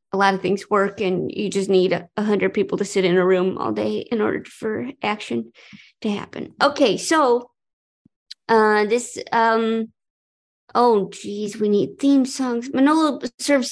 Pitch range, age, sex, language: 195-260 Hz, 30-49, female, English